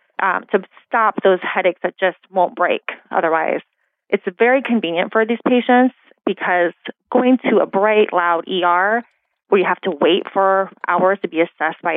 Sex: female